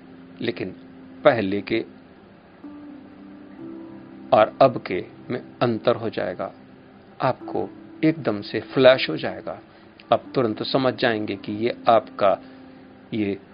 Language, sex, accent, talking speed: Hindi, male, native, 105 wpm